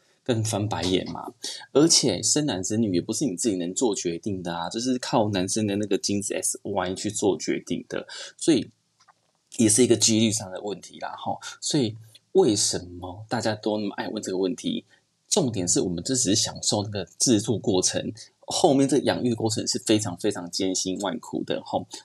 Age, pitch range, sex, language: 20-39, 95-115 Hz, male, Chinese